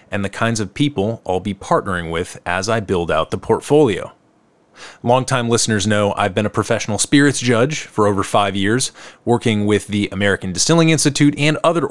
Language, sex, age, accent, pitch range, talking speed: English, male, 30-49, American, 100-135 Hz, 180 wpm